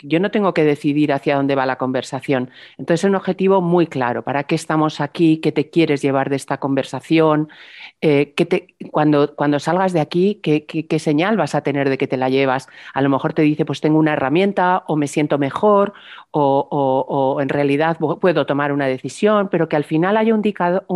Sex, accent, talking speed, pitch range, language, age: female, Spanish, 215 wpm, 145-185 Hz, Spanish, 40-59